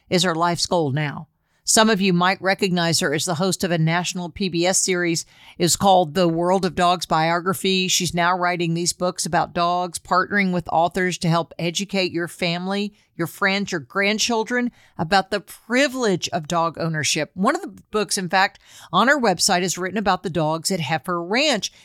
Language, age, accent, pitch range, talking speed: English, 50-69, American, 170-210 Hz, 185 wpm